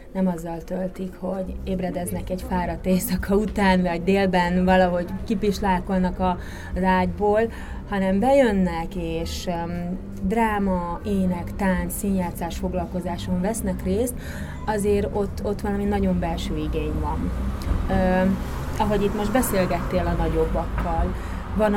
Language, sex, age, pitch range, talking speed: Hungarian, female, 30-49, 170-205 Hz, 110 wpm